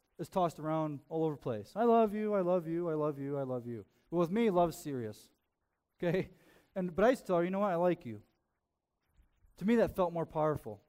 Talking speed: 240 wpm